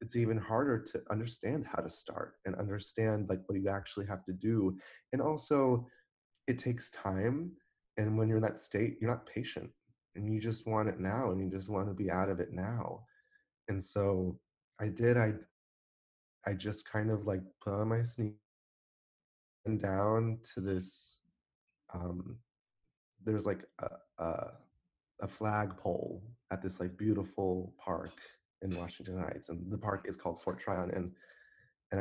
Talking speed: 165 wpm